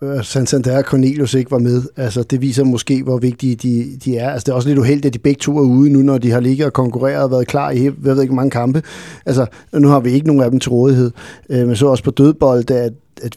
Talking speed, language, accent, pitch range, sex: 275 wpm, Danish, native, 130-150 Hz, male